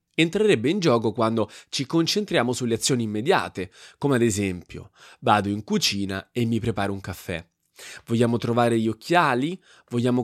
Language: Italian